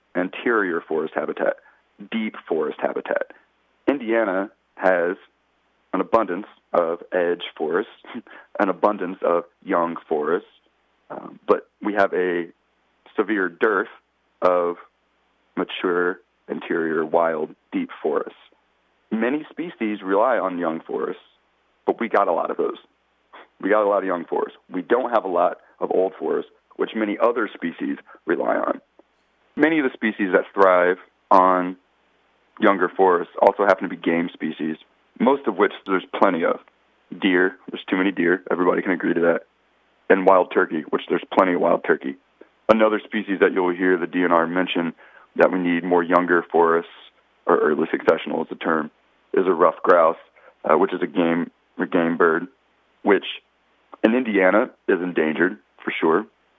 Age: 40-59